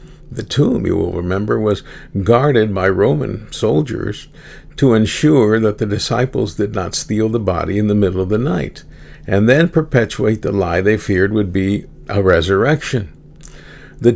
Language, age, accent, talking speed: English, 50-69, American, 160 wpm